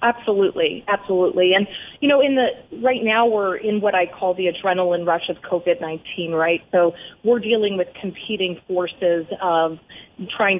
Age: 30-49